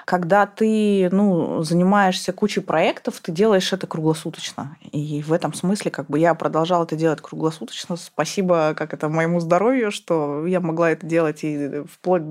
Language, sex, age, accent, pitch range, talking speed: Russian, female, 20-39, native, 160-195 Hz, 160 wpm